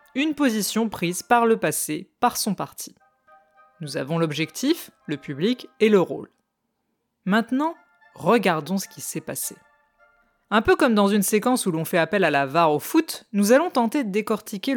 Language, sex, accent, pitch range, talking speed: French, female, French, 160-245 Hz, 175 wpm